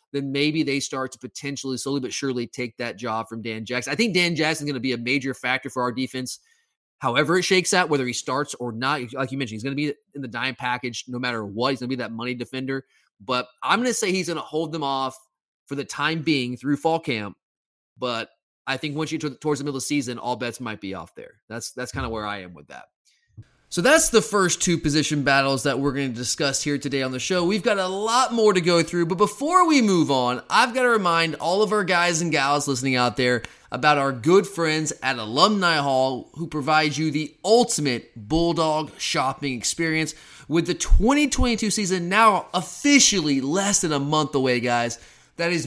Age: 20-39